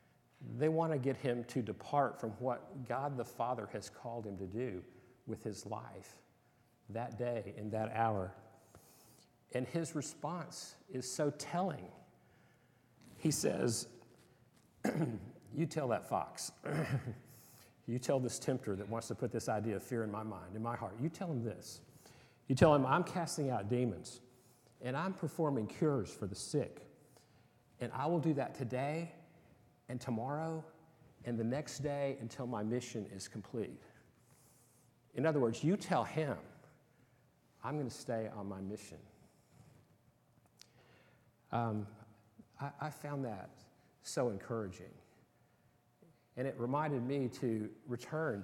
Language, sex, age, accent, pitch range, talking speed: English, male, 50-69, American, 115-145 Hz, 145 wpm